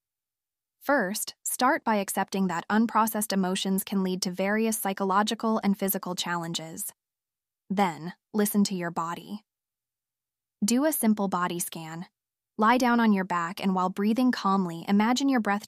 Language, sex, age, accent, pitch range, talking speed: English, female, 10-29, American, 185-220 Hz, 140 wpm